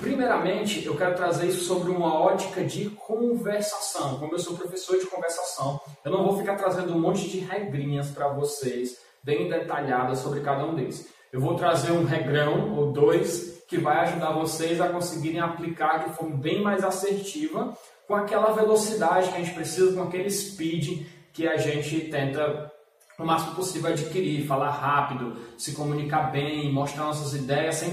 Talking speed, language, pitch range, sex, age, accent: 170 wpm, Portuguese, 150-190 Hz, male, 20-39, Brazilian